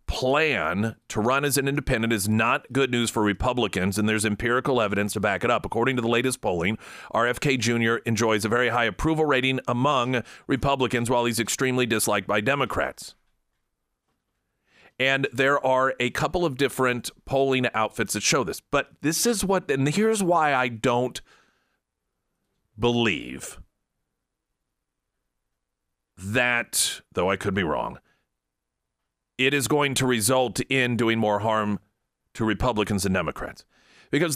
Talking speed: 145 wpm